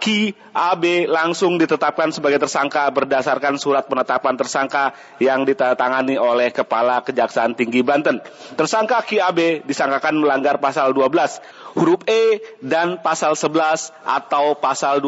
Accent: native